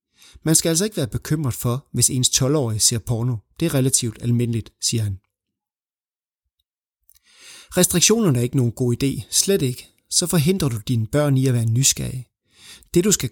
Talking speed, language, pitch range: 170 wpm, Danish, 120-150 Hz